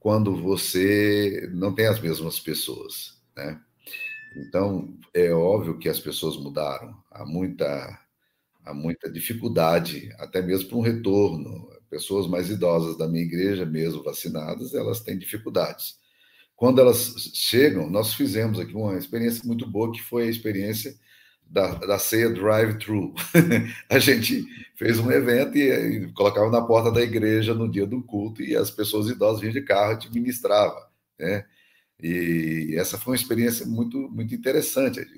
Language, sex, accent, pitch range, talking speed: Portuguese, male, Brazilian, 90-115 Hz, 150 wpm